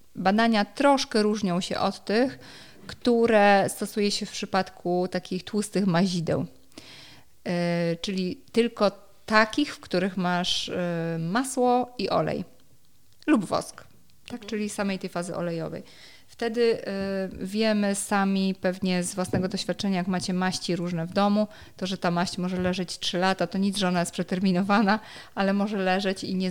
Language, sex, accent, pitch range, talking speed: Polish, female, native, 175-200 Hz, 140 wpm